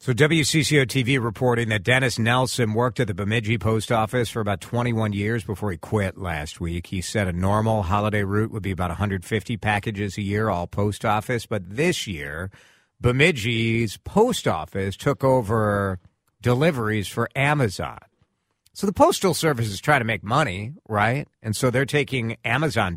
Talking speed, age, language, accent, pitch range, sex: 165 wpm, 50-69, English, American, 95-130 Hz, male